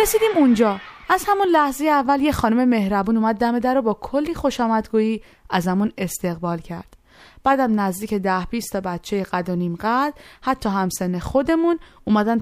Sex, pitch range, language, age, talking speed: female, 200-300 Hz, Persian, 20-39, 160 wpm